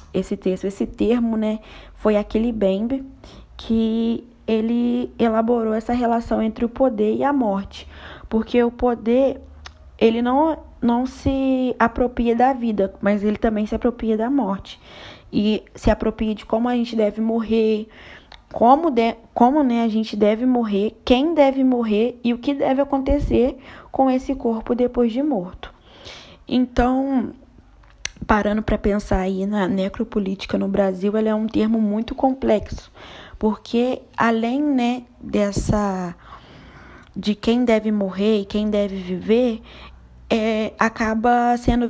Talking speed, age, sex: 135 wpm, 20-39, female